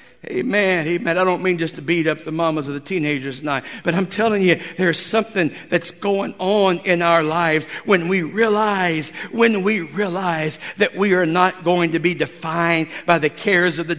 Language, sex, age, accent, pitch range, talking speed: English, male, 60-79, American, 175-230 Hz, 195 wpm